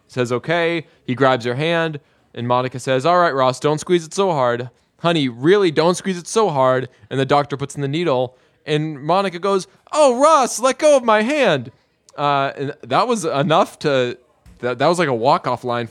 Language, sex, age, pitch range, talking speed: English, male, 20-39, 125-170 Hz, 205 wpm